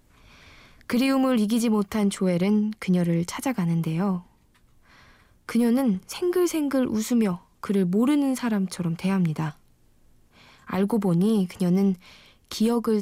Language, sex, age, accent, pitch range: Korean, female, 20-39, native, 180-220 Hz